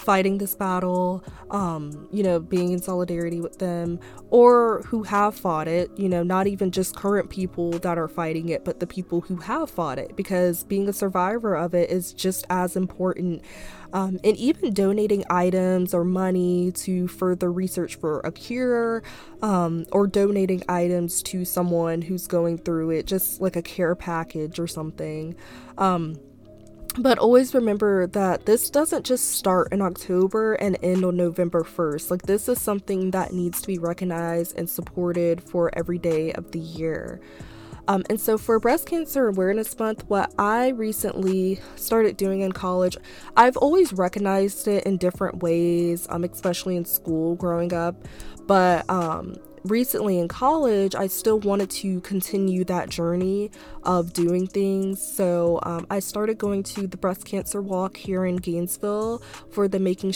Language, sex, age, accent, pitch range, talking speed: English, female, 20-39, American, 175-200 Hz, 165 wpm